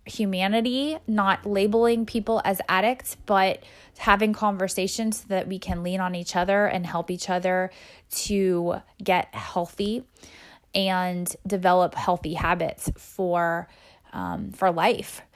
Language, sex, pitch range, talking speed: English, female, 180-215 Hz, 125 wpm